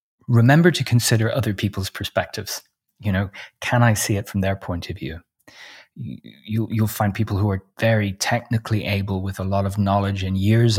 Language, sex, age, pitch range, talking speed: English, male, 30-49, 95-115 Hz, 185 wpm